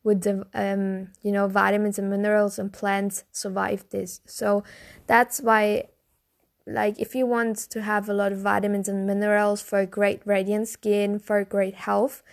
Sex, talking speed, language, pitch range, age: female, 170 wpm, English, 200-225 Hz, 10-29